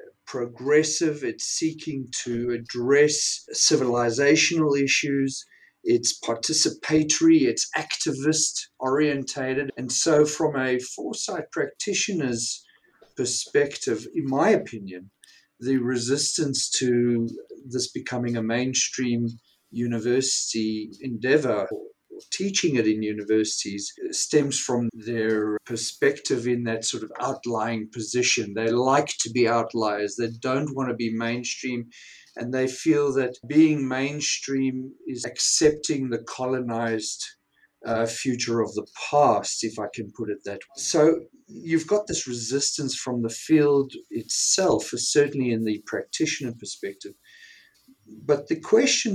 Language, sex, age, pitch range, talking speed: English, male, 50-69, 115-155 Hz, 115 wpm